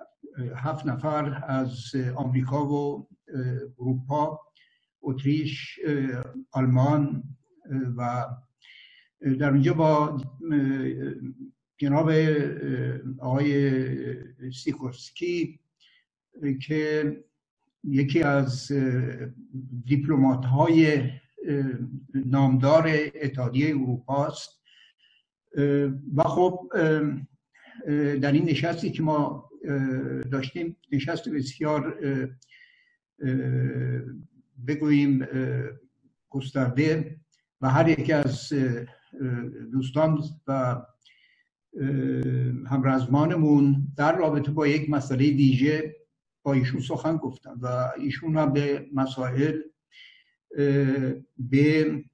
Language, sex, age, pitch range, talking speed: Persian, male, 60-79, 130-155 Hz, 65 wpm